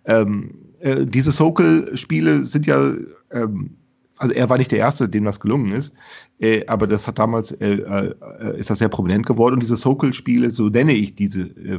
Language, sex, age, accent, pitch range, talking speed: German, male, 40-59, German, 110-150 Hz, 195 wpm